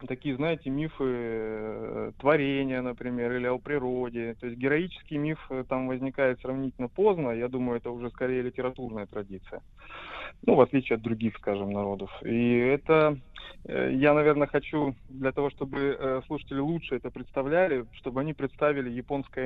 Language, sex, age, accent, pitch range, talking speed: Russian, male, 20-39, native, 120-145 Hz, 140 wpm